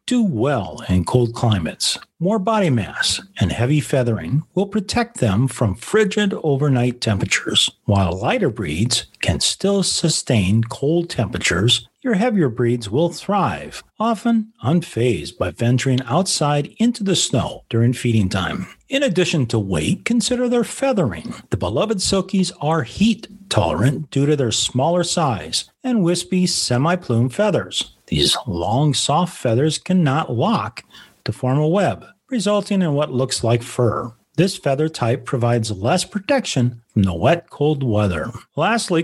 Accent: American